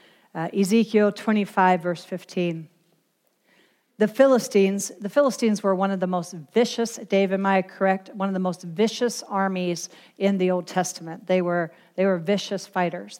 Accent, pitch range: American, 180-215 Hz